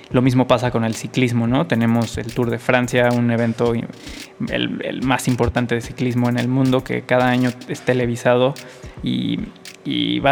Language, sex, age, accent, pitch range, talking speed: Spanish, male, 20-39, Mexican, 120-130 Hz, 180 wpm